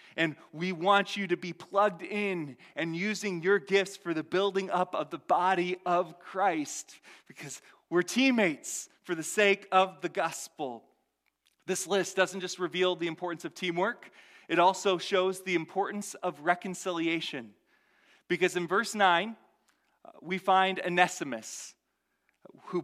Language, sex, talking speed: English, male, 140 wpm